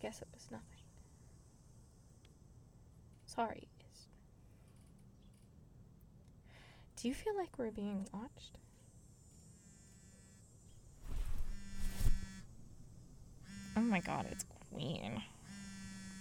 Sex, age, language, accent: female, 20-39, English, American